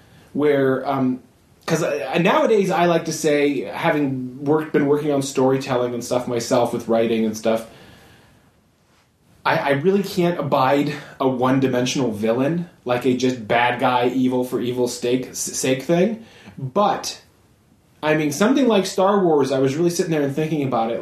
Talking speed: 165 wpm